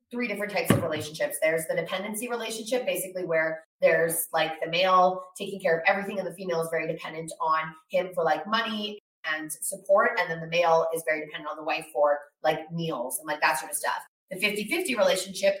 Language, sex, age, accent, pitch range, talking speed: English, female, 20-39, American, 160-210 Hz, 210 wpm